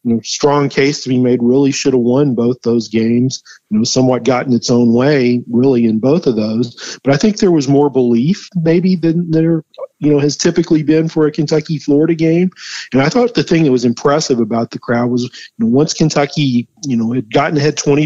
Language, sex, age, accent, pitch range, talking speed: English, male, 40-59, American, 125-150 Hz, 225 wpm